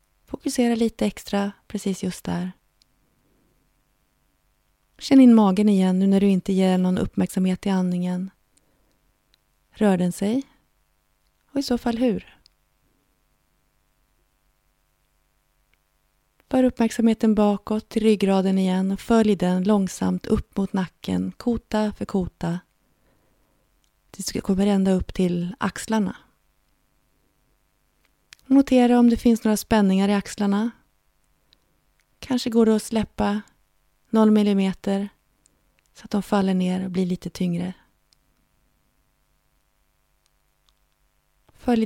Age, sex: 30-49, female